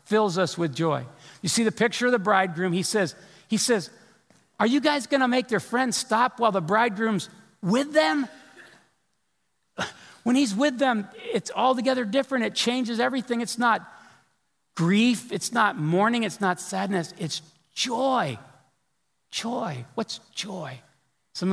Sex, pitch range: male, 160-215 Hz